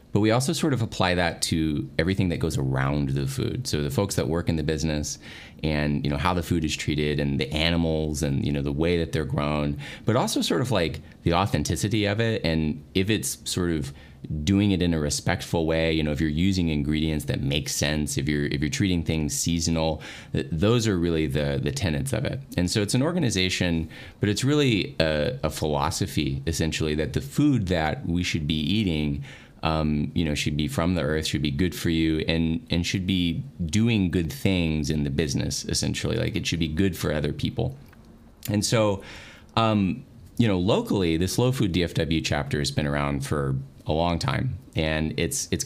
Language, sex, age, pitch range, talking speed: English, male, 30-49, 75-95 Hz, 210 wpm